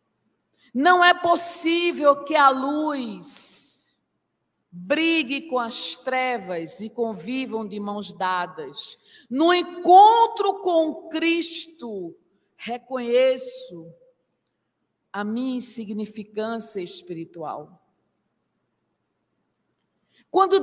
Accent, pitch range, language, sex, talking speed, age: Brazilian, 215-330 Hz, Portuguese, female, 75 wpm, 50-69